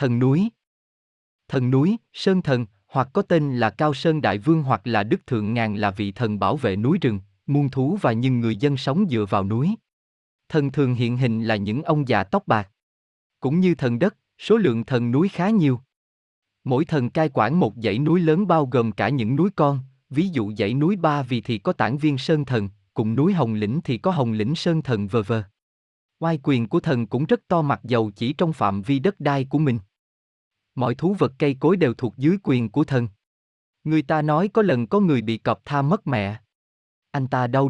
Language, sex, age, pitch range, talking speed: Vietnamese, male, 20-39, 115-160 Hz, 220 wpm